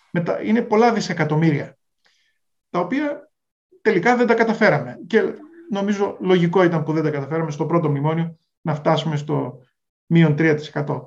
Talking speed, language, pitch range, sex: 135 wpm, Greek, 150-195 Hz, male